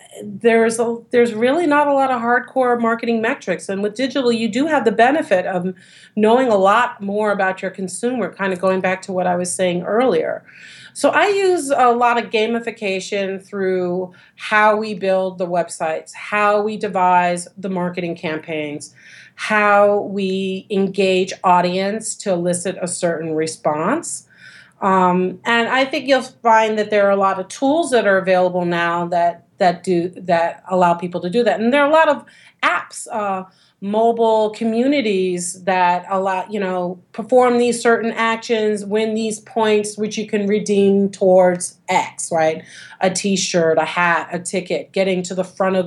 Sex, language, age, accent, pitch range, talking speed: female, English, 40-59, American, 180-225 Hz, 170 wpm